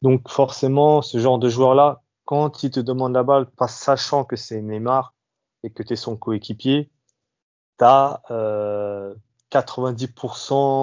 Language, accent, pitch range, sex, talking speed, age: French, French, 115-140 Hz, male, 140 wpm, 20-39